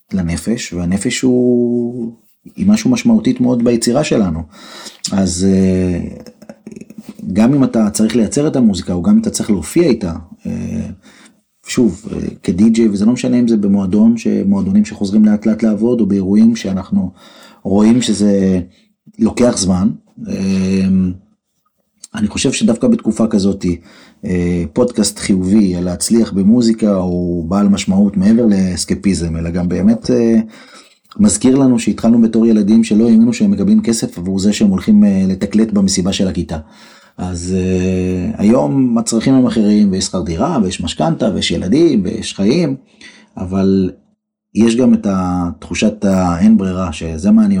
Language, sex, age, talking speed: Hebrew, male, 30-49, 130 wpm